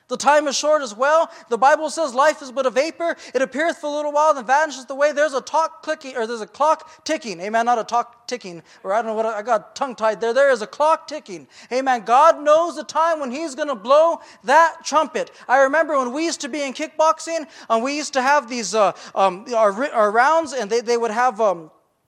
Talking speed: 250 wpm